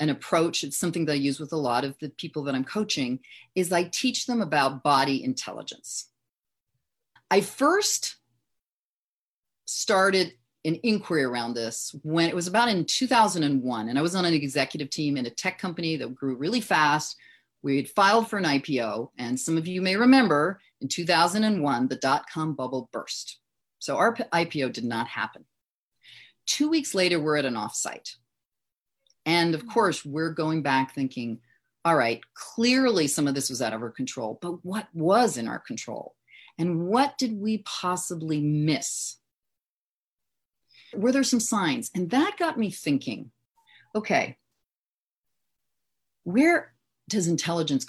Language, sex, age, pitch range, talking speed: English, female, 40-59, 135-210 Hz, 155 wpm